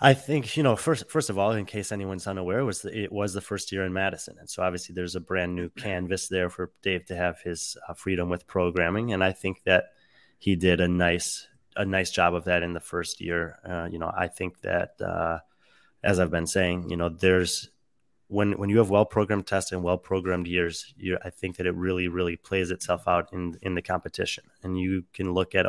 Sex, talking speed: male, 235 wpm